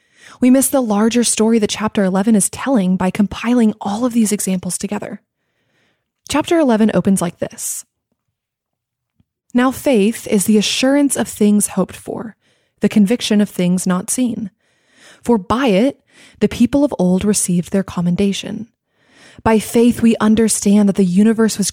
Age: 20-39